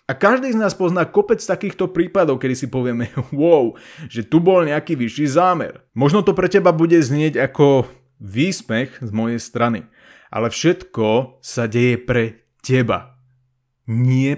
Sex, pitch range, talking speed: male, 120-165 Hz, 150 wpm